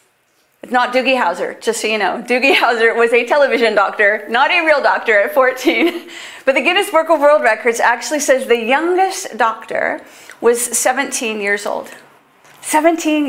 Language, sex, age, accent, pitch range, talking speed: English, female, 40-59, American, 235-330 Hz, 165 wpm